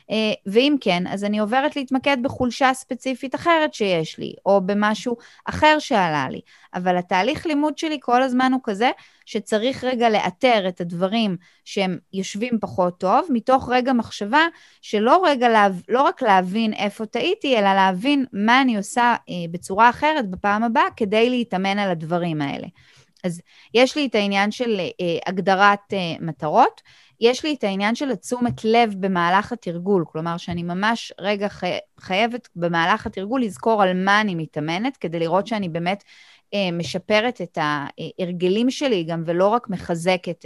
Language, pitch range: English, 180-245 Hz